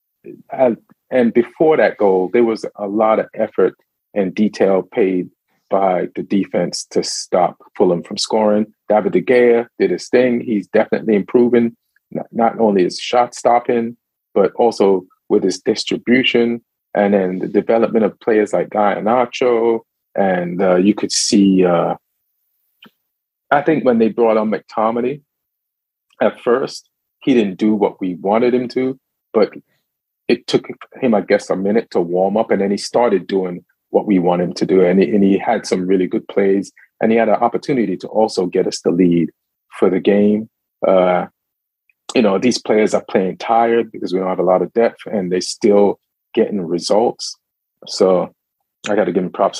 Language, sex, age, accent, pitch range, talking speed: English, male, 40-59, American, 95-115 Hz, 175 wpm